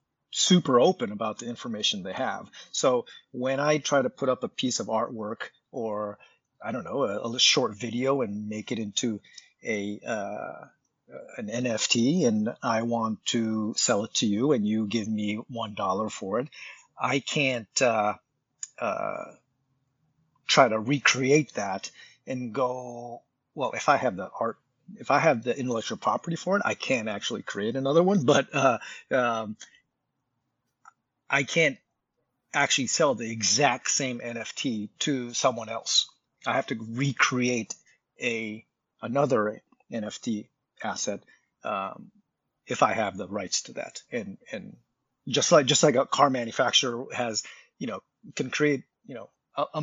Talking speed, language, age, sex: 155 wpm, English, 40-59, male